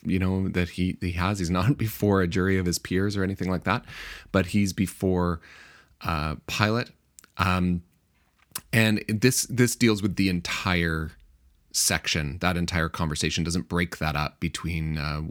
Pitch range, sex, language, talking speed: 80-95 Hz, male, English, 160 wpm